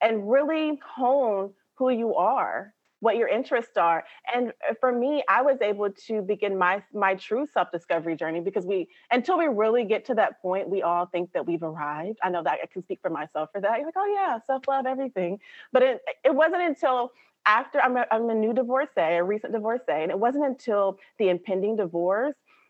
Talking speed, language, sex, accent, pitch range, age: 205 wpm, English, female, American, 190-265 Hz, 30-49